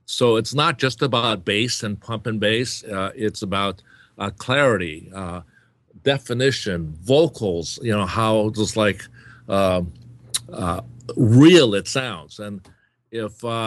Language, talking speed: English, 130 wpm